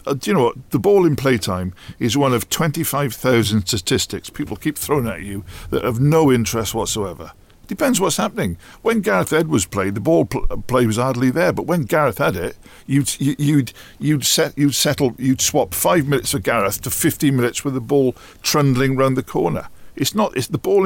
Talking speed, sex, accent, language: 205 wpm, male, British, English